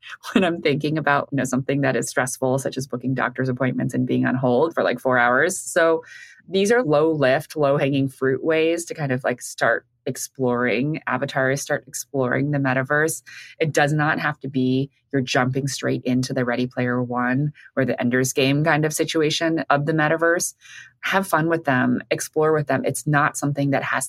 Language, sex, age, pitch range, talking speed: English, female, 20-39, 130-155 Hz, 195 wpm